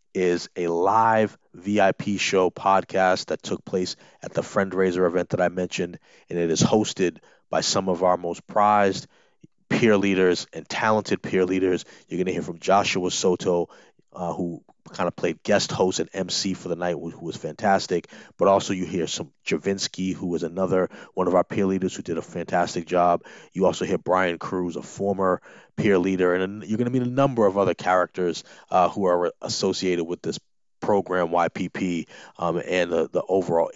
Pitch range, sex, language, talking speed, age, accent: 90-100 Hz, male, English, 185 wpm, 30-49, American